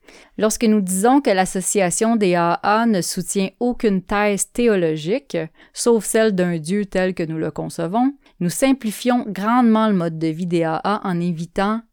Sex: female